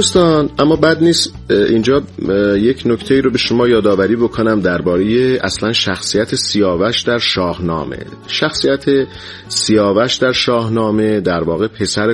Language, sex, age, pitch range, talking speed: Persian, male, 40-59, 90-115 Hz, 135 wpm